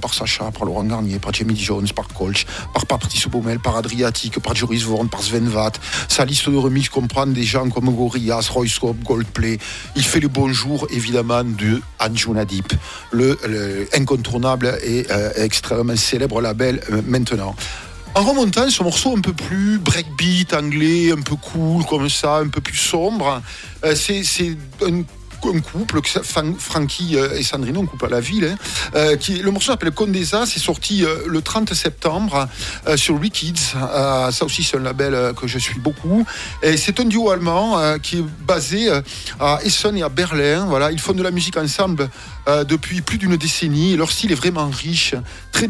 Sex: male